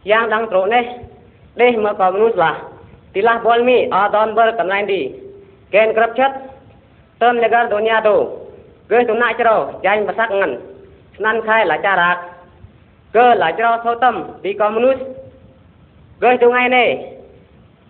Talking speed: 145 wpm